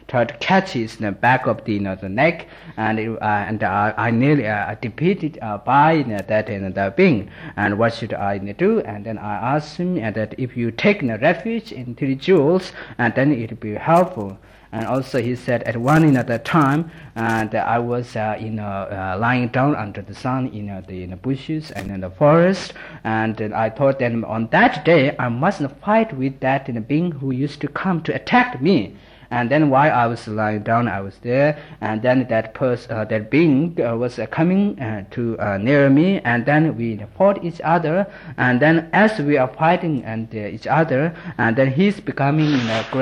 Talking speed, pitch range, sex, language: 215 wpm, 105-150 Hz, male, Italian